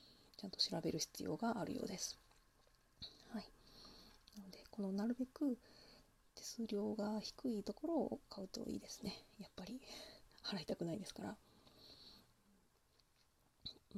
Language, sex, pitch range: Japanese, female, 190-230 Hz